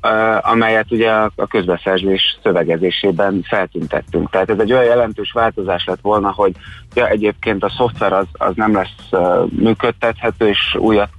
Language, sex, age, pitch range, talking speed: Hungarian, male, 30-49, 95-115 Hz, 135 wpm